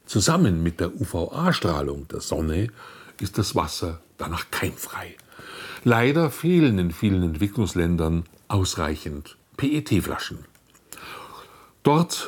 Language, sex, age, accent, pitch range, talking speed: German, male, 60-79, German, 85-125 Hz, 95 wpm